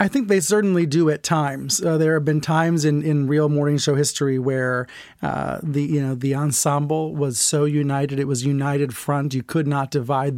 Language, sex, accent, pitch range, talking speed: English, male, American, 145-170 Hz, 210 wpm